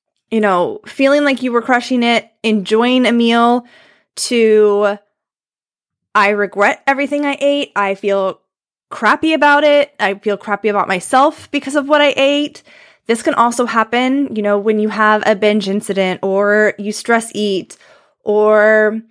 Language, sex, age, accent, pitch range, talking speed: English, female, 20-39, American, 200-255 Hz, 155 wpm